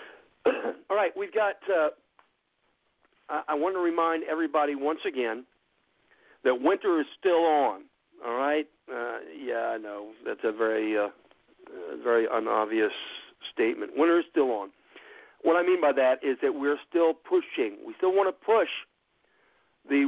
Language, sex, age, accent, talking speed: English, male, 50-69, American, 150 wpm